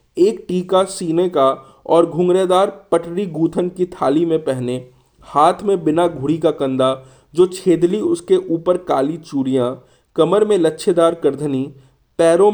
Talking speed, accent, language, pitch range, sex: 140 wpm, native, Hindi, 135-180 Hz, male